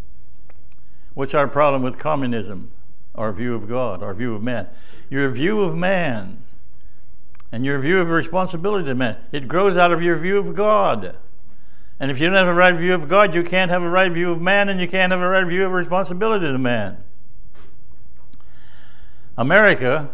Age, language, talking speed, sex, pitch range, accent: 60-79, English, 185 wpm, male, 120-155 Hz, American